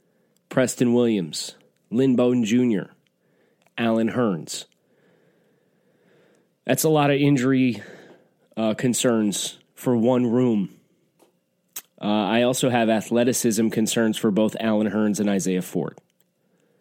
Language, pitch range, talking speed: English, 105-130 Hz, 105 wpm